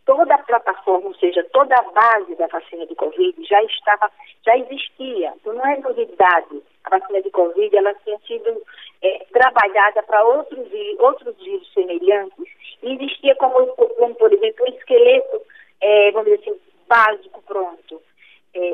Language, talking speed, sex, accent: Portuguese, 155 wpm, female, Brazilian